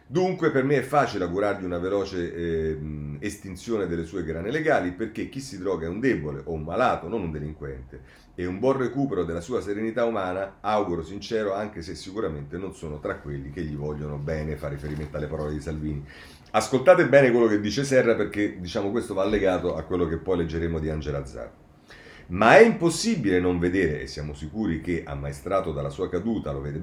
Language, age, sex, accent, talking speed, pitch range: Italian, 40-59, male, native, 200 wpm, 80-115 Hz